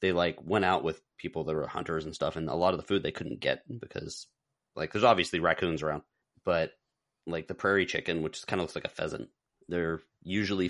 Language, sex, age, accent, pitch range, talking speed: English, male, 30-49, American, 80-90 Hz, 225 wpm